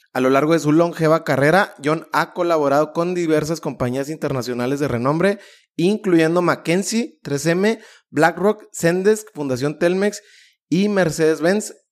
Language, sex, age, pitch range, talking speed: Spanish, male, 30-49, 140-175 Hz, 125 wpm